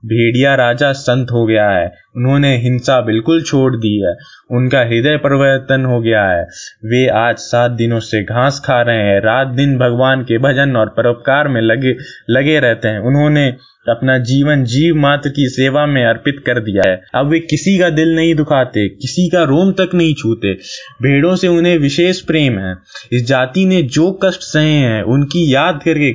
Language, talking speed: Hindi, 185 wpm